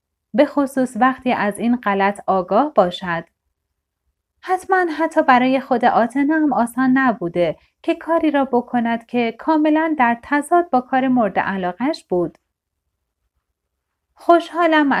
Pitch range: 200-280 Hz